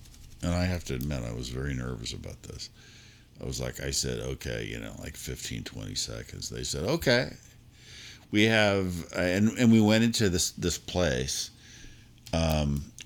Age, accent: 50-69, American